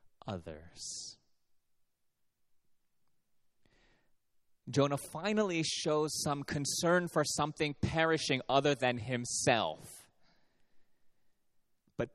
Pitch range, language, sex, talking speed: 95-140 Hz, English, male, 65 wpm